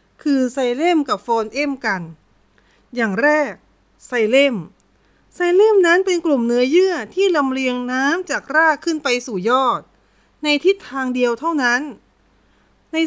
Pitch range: 240-330 Hz